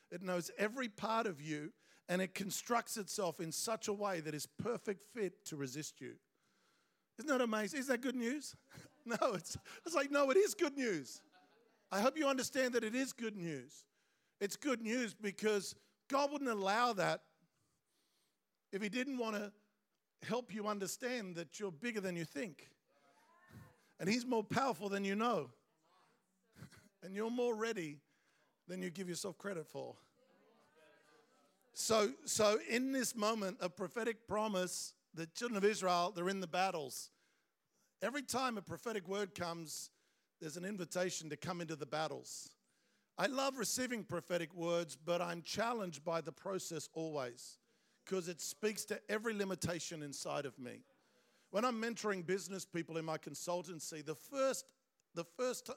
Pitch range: 175-230 Hz